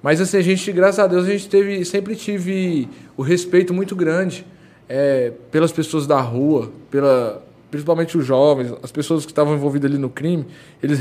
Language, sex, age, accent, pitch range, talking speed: Portuguese, male, 20-39, Brazilian, 150-185 Hz, 185 wpm